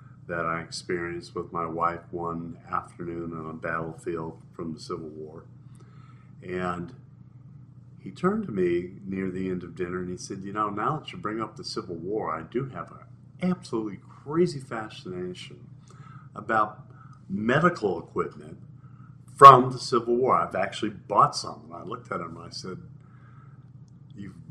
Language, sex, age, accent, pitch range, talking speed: English, male, 50-69, American, 95-135 Hz, 160 wpm